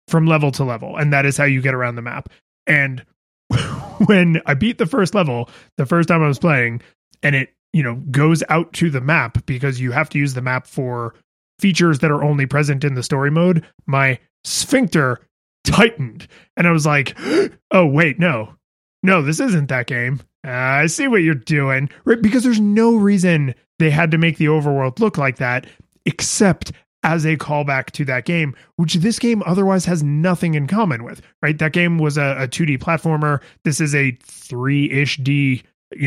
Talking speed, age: 195 wpm, 20-39